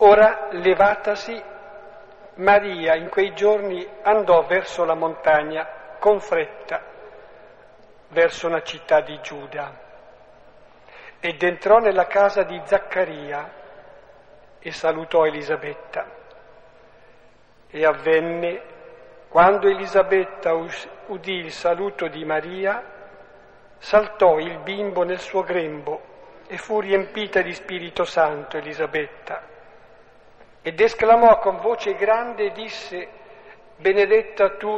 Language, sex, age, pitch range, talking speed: Italian, male, 50-69, 160-205 Hz, 100 wpm